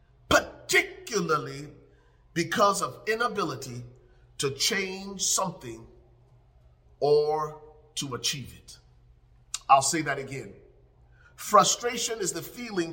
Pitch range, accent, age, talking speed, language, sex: 120-160 Hz, American, 40-59, 90 wpm, English, male